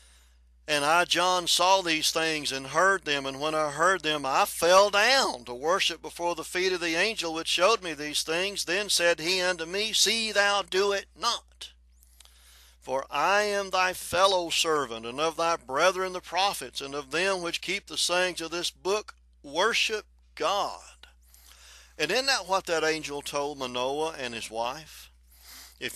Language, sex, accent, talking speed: English, male, American, 175 wpm